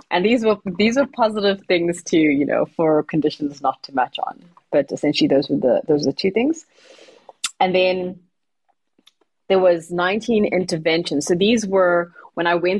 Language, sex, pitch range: English, female, 155-185 Hz